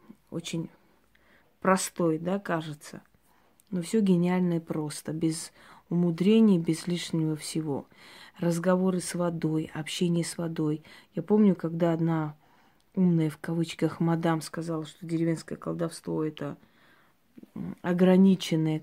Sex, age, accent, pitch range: female, 20-39, native, 160-185 Hz